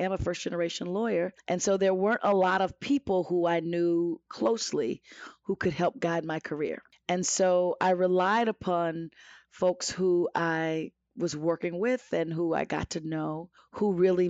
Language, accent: English, American